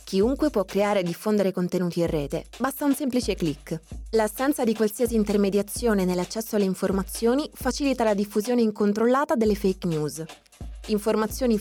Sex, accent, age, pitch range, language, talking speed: female, native, 20-39, 190-230 Hz, Italian, 140 wpm